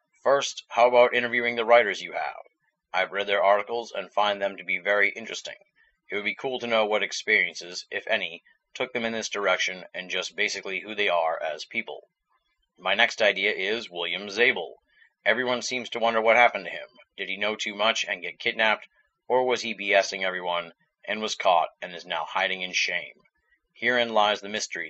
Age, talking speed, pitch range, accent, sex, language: 30-49, 200 wpm, 95-115 Hz, American, male, English